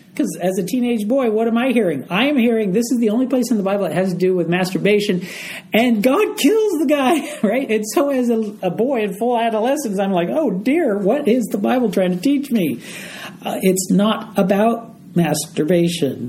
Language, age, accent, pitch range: English, 50-69, American, 180-230 Hz